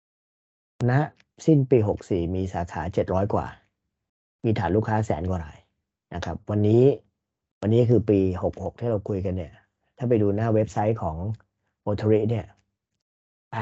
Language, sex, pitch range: Thai, male, 95-115 Hz